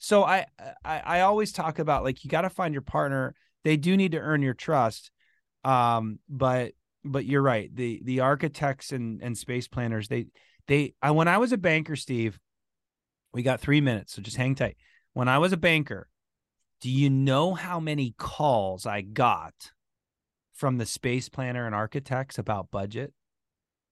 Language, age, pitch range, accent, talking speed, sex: English, 30-49, 125-170 Hz, American, 180 wpm, male